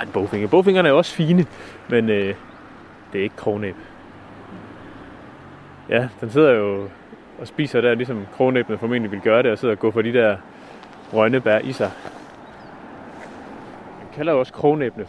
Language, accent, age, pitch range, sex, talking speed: Danish, native, 30-49, 110-140 Hz, male, 165 wpm